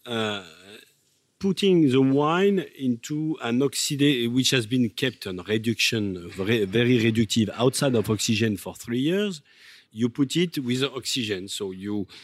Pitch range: 105-145 Hz